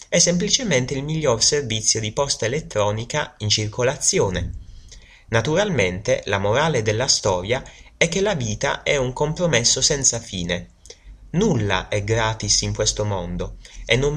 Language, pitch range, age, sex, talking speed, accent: Italian, 100-145 Hz, 30-49, male, 135 wpm, native